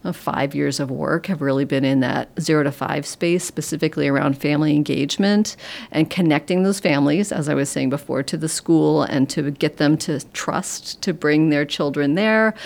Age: 40-59